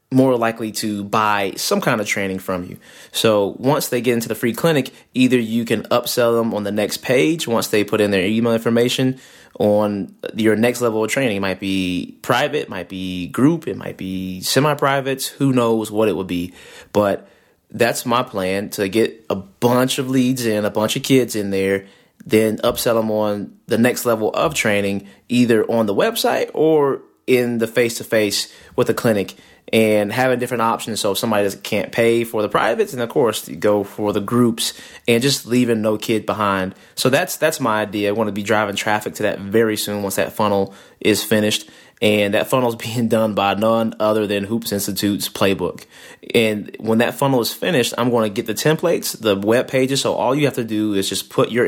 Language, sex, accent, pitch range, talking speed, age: English, male, American, 100-120 Hz, 210 wpm, 20-39